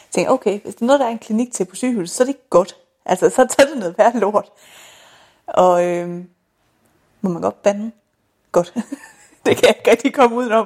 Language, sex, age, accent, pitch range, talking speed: Danish, female, 30-49, native, 180-225 Hz, 215 wpm